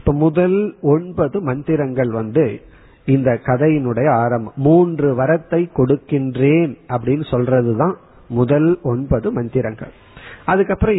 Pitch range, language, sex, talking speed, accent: 125-165 Hz, Tamil, male, 95 wpm, native